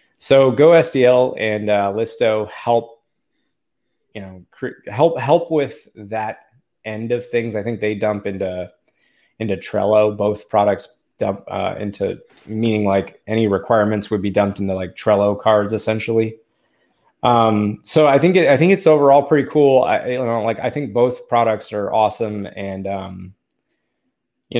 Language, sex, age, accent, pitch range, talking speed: English, male, 20-39, American, 105-130 Hz, 160 wpm